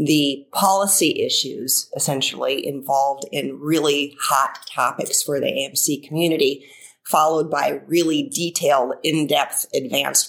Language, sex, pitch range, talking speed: English, female, 150-195 Hz, 110 wpm